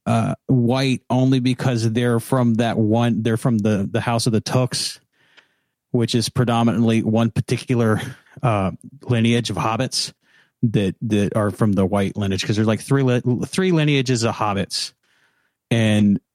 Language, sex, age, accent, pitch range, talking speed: English, male, 30-49, American, 110-130 Hz, 155 wpm